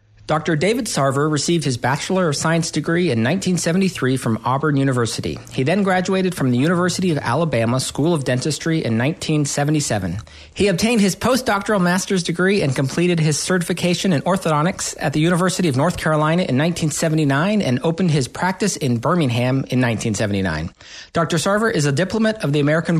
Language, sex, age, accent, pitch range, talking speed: English, male, 40-59, American, 140-175 Hz, 165 wpm